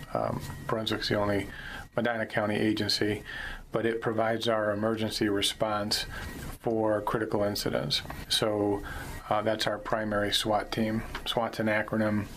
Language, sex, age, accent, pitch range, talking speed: English, male, 40-59, American, 100-110 Hz, 125 wpm